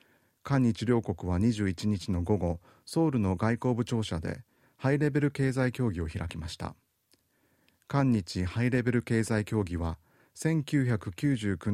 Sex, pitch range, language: male, 90-130 Hz, Japanese